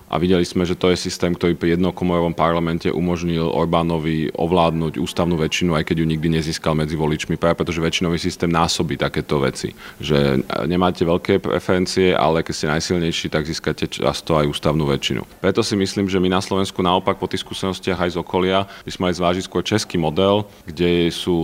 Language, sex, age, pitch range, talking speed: Slovak, male, 30-49, 85-95 Hz, 190 wpm